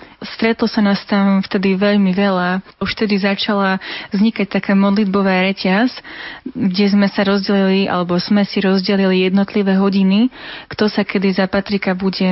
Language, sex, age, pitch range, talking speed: Slovak, female, 20-39, 190-210 Hz, 145 wpm